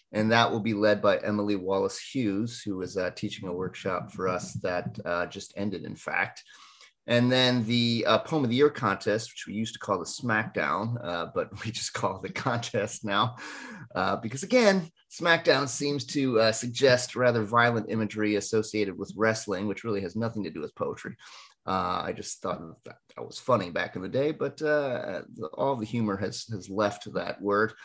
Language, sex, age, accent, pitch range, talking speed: English, male, 30-49, American, 105-125 Hz, 205 wpm